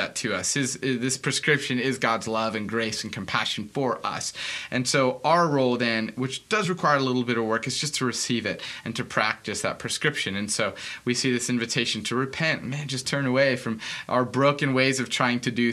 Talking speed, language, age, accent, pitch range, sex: 215 wpm, English, 20-39, American, 110-130 Hz, male